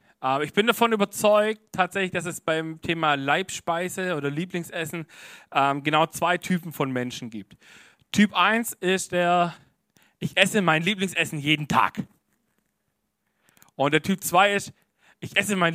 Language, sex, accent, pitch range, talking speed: German, male, German, 140-185 Hz, 140 wpm